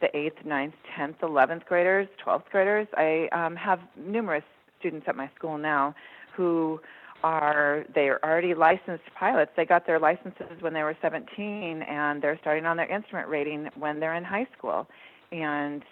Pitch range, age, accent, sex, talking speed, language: 150-180 Hz, 40-59, American, female, 170 wpm, English